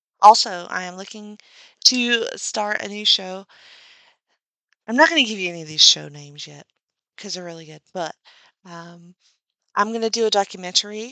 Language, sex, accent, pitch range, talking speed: English, female, American, 180-230 Hz, 180 wpm